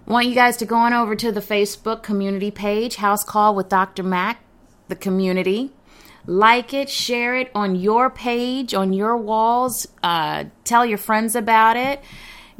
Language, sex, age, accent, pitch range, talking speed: English, female, 30-49, American, 180-230 Hz, 165 wpm